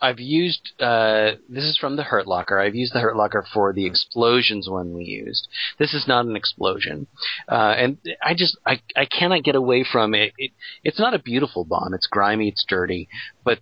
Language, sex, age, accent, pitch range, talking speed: English, male, 30-49, American, 100-115 Hz, 205 wpm